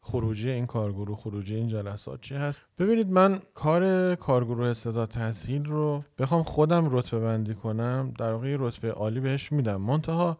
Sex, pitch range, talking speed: male, 115-160 Hz, 155 wpm